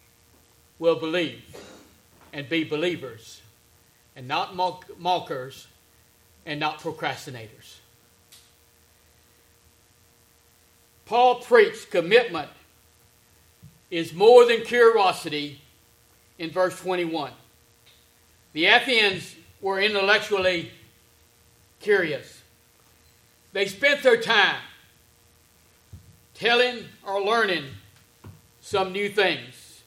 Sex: male